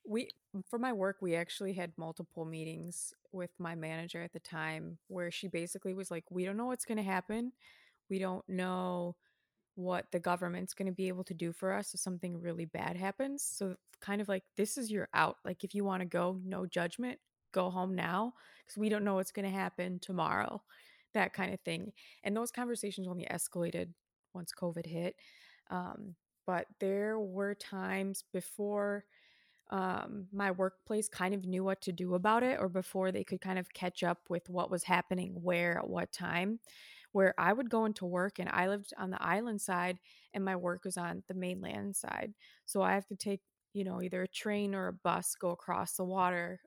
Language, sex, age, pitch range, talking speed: English, female, 20-39, 180-200 Hz, 205 wpm